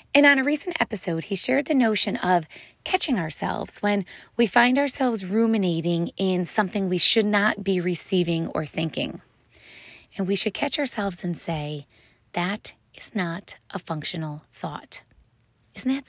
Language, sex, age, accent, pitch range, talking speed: English, female, 30-49, American, 170-225 Hz, 155 wpm